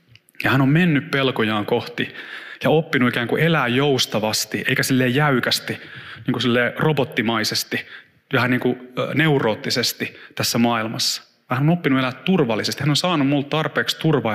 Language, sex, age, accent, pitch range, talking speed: Finnish, male, 30-49, native, 115-140 Hz, 145 wpm